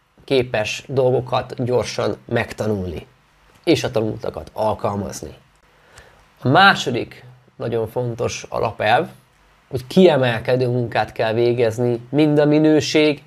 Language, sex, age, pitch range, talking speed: Hungarian, male, 30-49, 110-140 Hz, 95 wpm